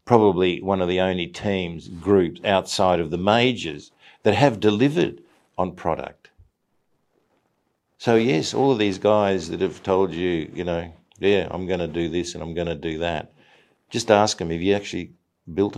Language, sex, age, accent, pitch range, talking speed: English, male, 50-69, Australian, 85-115 Hz, 180 wpm